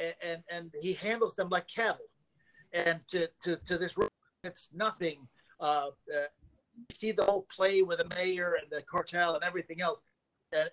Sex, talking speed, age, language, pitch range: male, 180 wpm, 40-59, English, 165-190 Hz